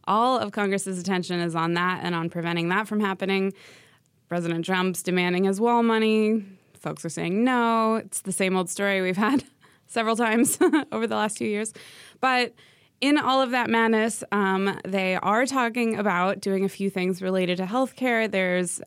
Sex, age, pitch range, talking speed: female, 20-39, 175-210 Hz, 180 wpm